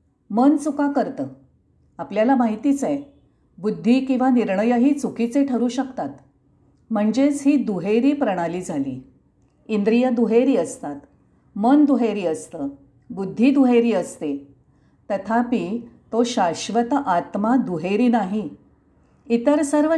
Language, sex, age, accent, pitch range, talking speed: Marathi, female, 50-69, native, 200-260 Hz, 100 wpm